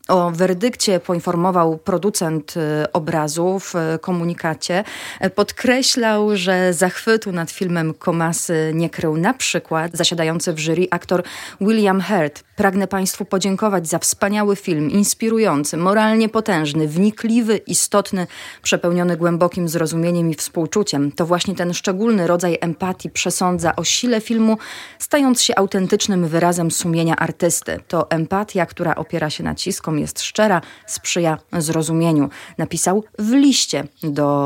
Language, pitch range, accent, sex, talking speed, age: Polish, 160-195 Hz, native, female, 120 wpm, 30-49